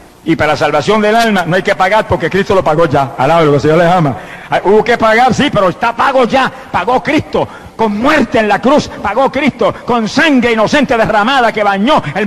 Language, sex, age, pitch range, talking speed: Spanish, male, 60-79, 125-195 Hz, 215 wpm